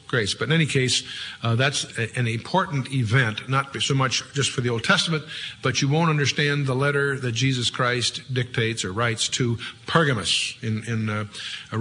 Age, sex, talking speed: 50-69, male, 180 wpm